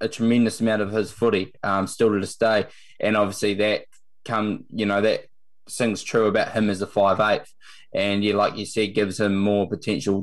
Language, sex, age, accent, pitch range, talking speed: English, male, 20-39, Australian, 105-125 Hz, 200 wpm